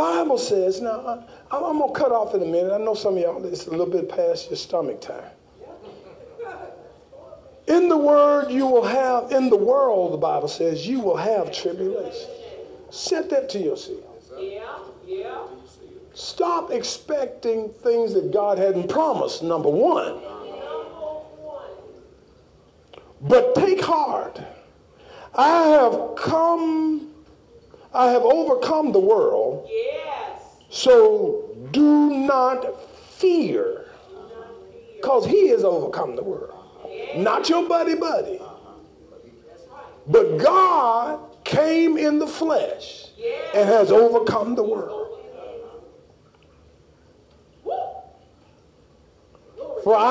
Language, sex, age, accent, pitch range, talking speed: English, male, 50-69, American, 275-455 Hz, 110 wpm